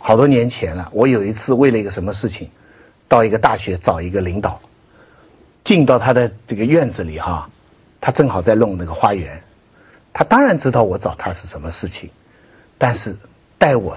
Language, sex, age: Chinese, male, 60-79